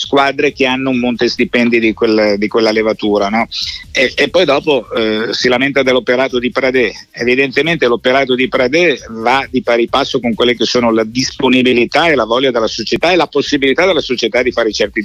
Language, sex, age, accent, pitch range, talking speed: Italian, male, 50-69, native, 115-145 Hz, 195 wpm